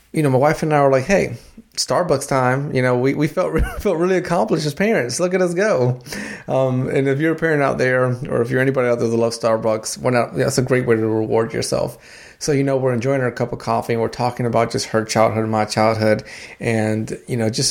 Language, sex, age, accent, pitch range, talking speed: English, male, 30-49, American, 115-140 Hz, 245 wpm